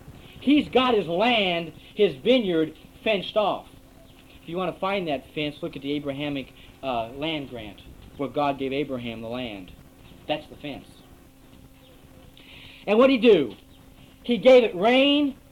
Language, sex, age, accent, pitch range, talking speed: English, male, 40-59, American, 165-220 Hz, 155 wpm